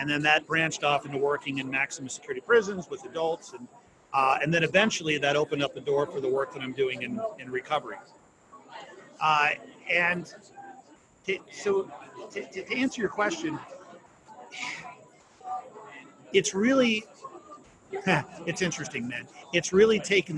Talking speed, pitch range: 145 wpm, 150-200 Hz